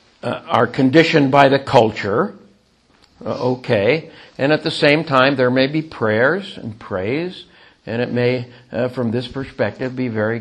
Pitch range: 110-150 Hz